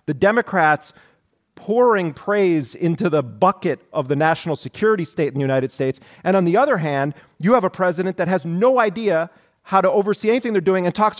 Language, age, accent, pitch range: English, 40-59, American, 135-170 Hz